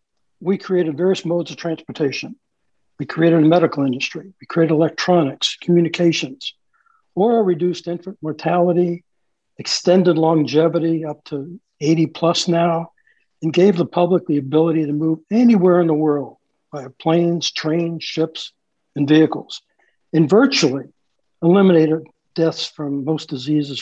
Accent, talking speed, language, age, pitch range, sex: American, 130 wpm, English, 60-79, 155-185 Hz, male